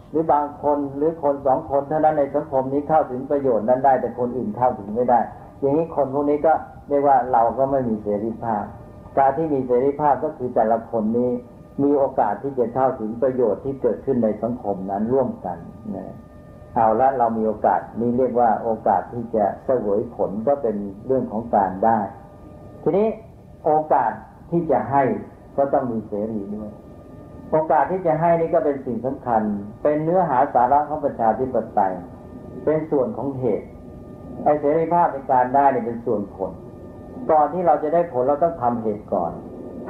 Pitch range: 110-145 Hz